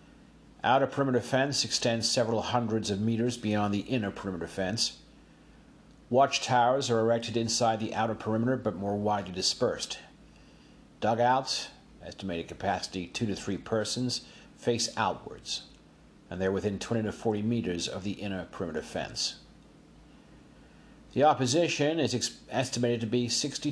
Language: English